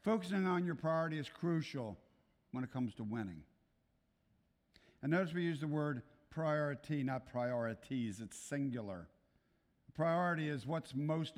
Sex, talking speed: male, 135 wpm